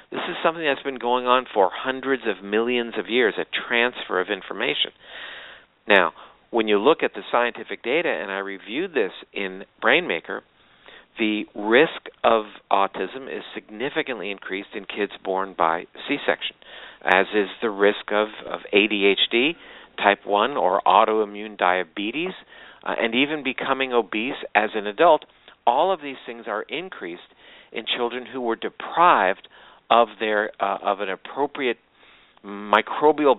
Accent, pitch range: American, 100-130 Hz